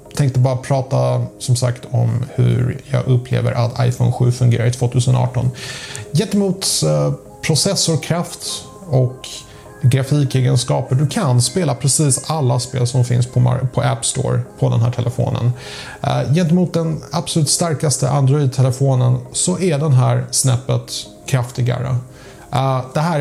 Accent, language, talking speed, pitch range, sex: Norwegian, Swedish, 120 wpm, 120-140 Hz, male